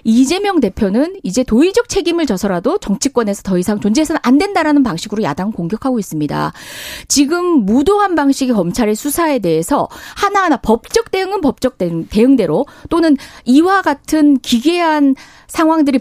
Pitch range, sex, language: 220-330 Hz, female, Korean